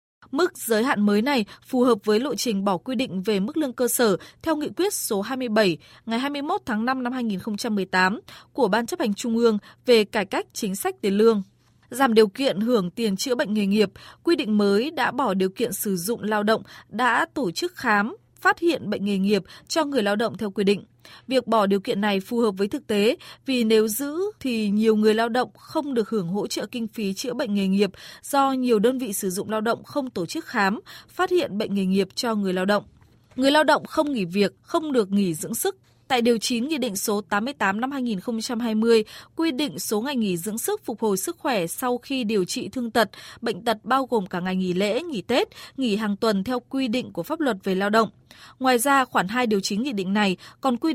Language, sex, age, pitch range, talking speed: Vietnamese, female, 20-39, 205-265 Hz, 235 wpm